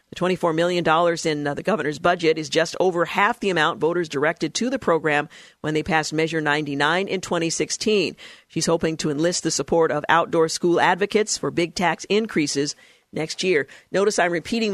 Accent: American